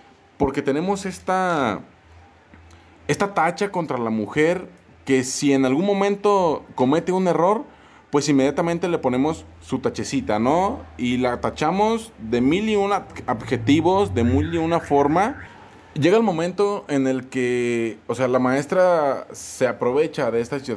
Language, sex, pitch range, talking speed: Spanish, male, 115-170 Hz, 140 wpm